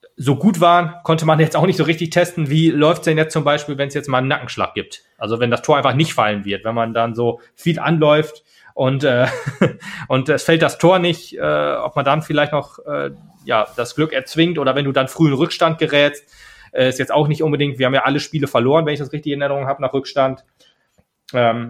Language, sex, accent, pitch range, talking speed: German, male, German, 120-150 Hz, 240 wpm